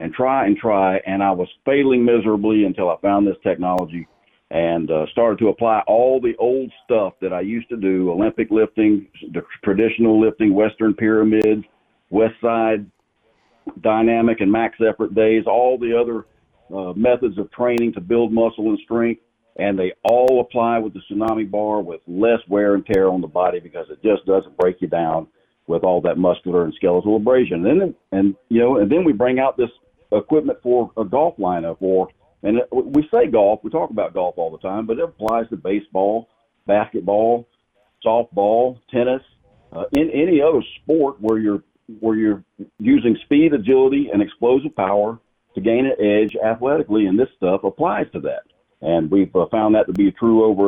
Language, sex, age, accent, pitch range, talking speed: English, male, 50-69, American, 100-120 Hz, 180 wpm